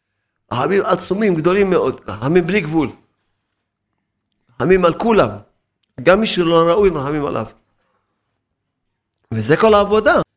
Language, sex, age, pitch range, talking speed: Hebrew, male, 50-69, 110-175 Hz, 110 wpm